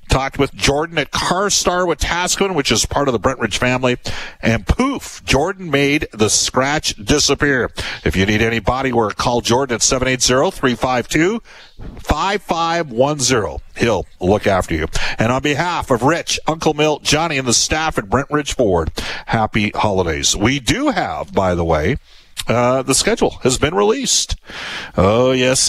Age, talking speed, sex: 50-69, 155 wpm, male